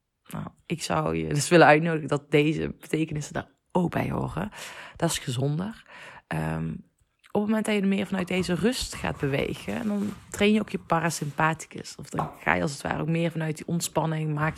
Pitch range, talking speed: 145-190 Hz, 200 wpm